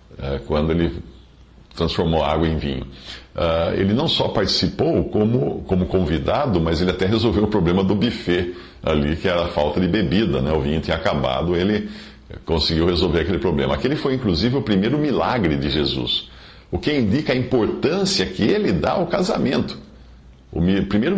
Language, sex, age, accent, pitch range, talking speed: Portuguese, male, 50-69, Brazilian, 75-95 Hz, 160 wpm